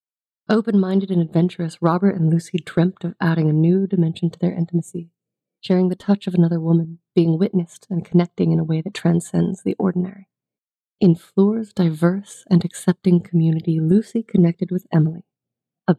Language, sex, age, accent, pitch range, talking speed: English, female, 30-49, American, 165-190 Hz, 160 wpm